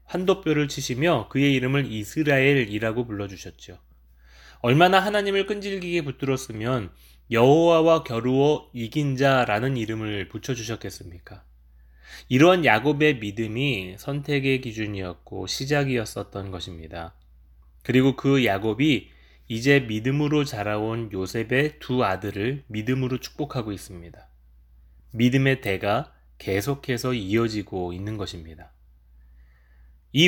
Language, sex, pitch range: Korean, male, 95-140 Hz